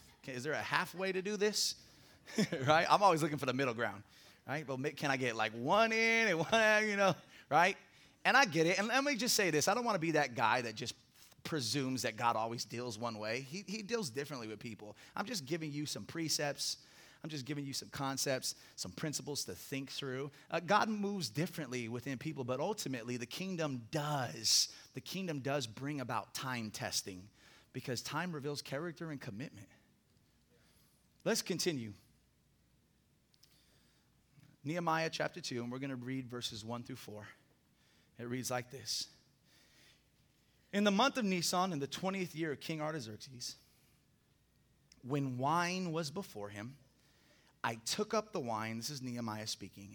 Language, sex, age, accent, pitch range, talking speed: English, male, 30-49, American, 120-165 Hz, 175 wpm